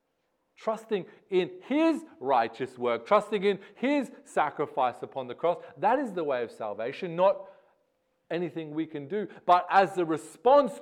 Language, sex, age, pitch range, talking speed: English, male, 40-59, 130-190 Hz, 150 wpm